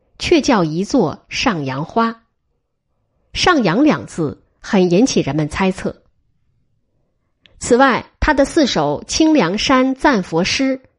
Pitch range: 180-275 Hz